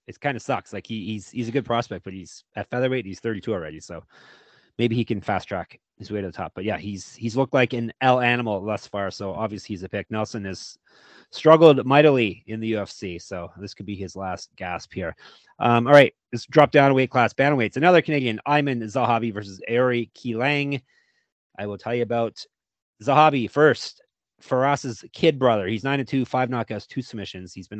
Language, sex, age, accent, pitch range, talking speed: English, male, 30-49, American, 105-140 Hz, 210 wpm